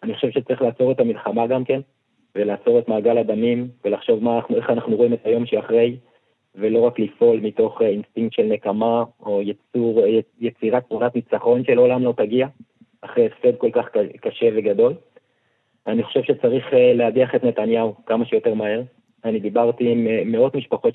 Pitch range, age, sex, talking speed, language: 115-135 Hz, 30-49, male, 160 wpm, Hebrew